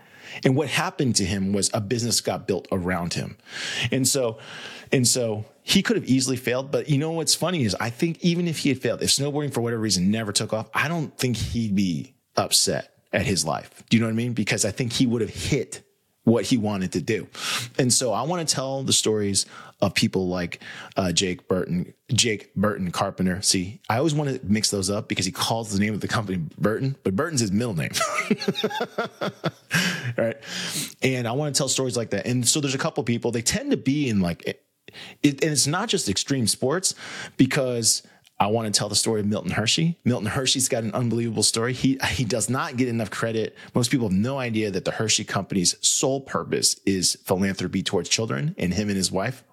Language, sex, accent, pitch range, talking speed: English, male, American, 105-135 Hz, 220 wpm